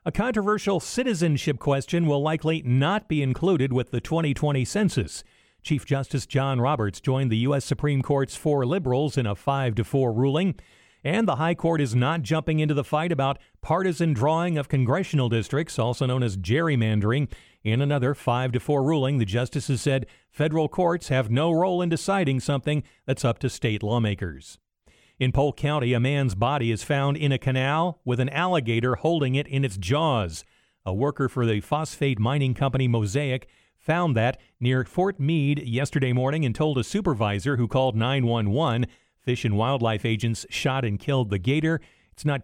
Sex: male